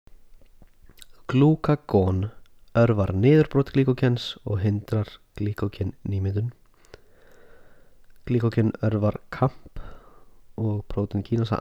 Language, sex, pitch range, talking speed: English, male, 105-120 Hz, 65 wpm